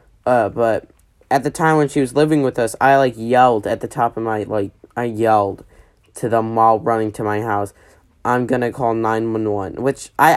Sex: male